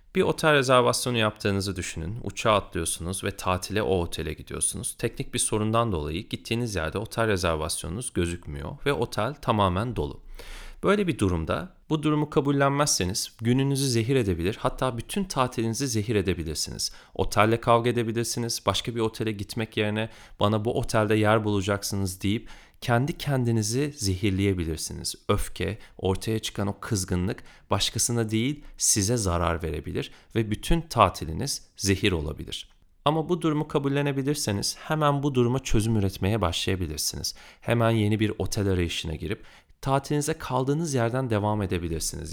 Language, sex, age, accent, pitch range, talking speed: Turkish, male, 40-59, native, 95-125 Hz, 130 wpm